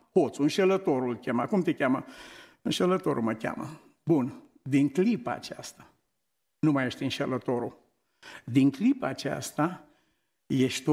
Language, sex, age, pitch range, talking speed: Romanian, male, 60-79, 130-160 Hz, 115 wpm